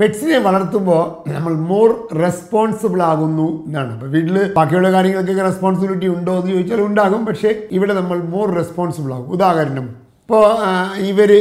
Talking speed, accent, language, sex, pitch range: 125 wpm, native, Malayalam, male, 150-185 Hz